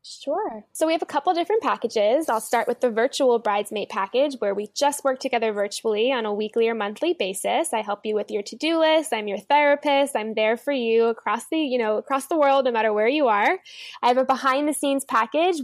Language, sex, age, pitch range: English, female, 10-29, 220-285 Hz